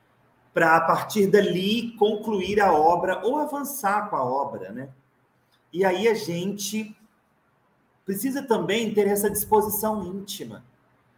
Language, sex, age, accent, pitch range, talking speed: Portuguese, male, 40-59, Brazilian, 135-205 Hz, 125 wpm